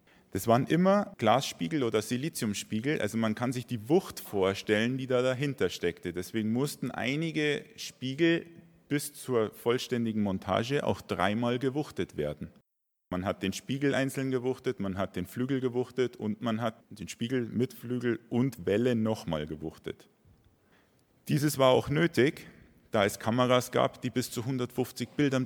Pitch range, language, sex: 95-130 Hz, German, male